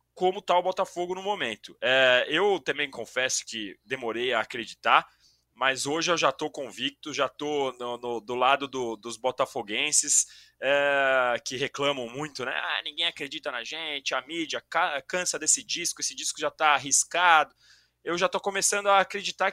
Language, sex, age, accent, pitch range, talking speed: Portuguese, male, 20-39, Brazilian, 120-180 Hz, 155 wpm